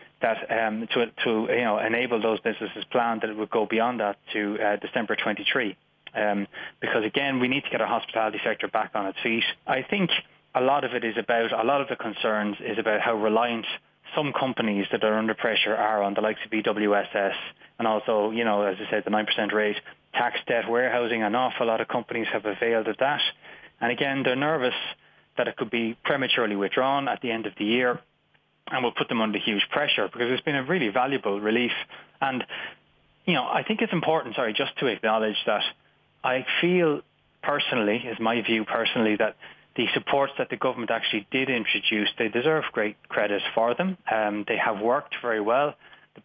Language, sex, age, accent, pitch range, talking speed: English, male, 20-39, Irish, 105-125 Hz, 200 wpm